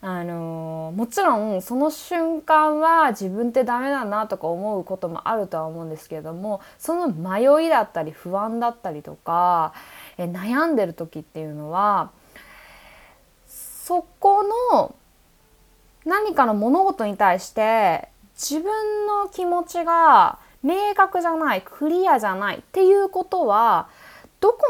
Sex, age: female, 20-39